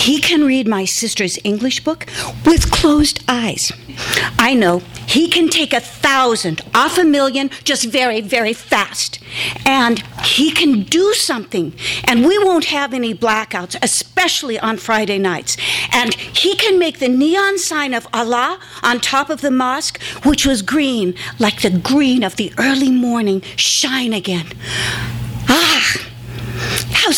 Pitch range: 175-275 Hz